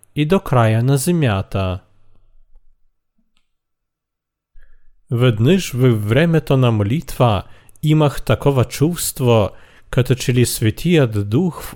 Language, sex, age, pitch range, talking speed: Bulgarian, male, 40-59, 110-150 Hz, 90 wpm